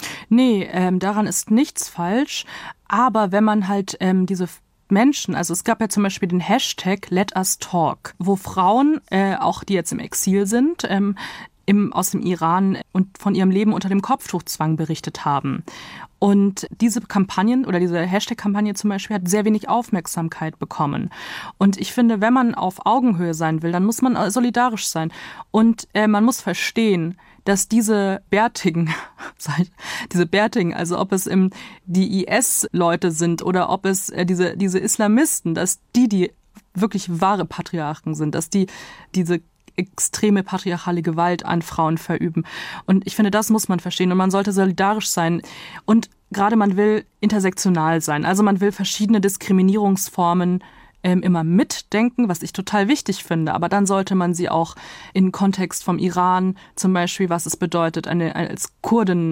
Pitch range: 175-210 Hz